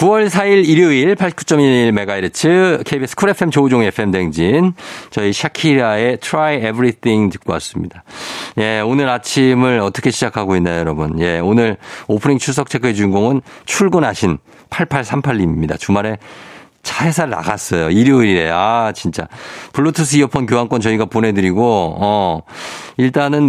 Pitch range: 100-145 Hz